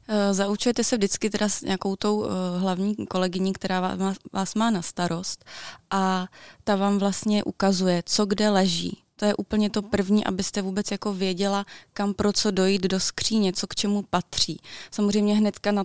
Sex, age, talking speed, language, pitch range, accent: female, 20-39, 170 wpm, Czech, 180-200 Hz, native